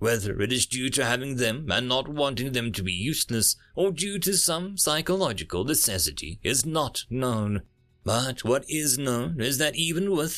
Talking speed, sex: 180 wpm, male